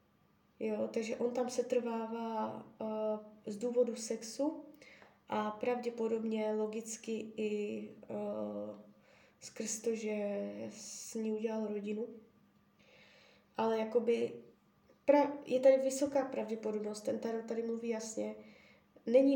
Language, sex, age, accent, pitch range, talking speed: Czech, female, 20-39, native, 215-250 Hz, 110 wpm